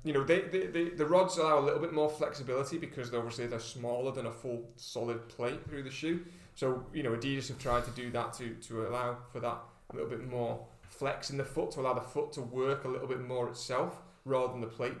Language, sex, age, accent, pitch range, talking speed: English, male, 30-49, British, 125-145 Hz, 250 wpm